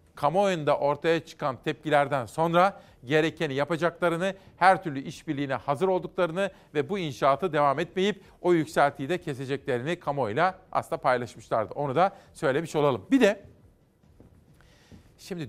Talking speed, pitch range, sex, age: 120 wpm, 130-170 Hz, male, 40-59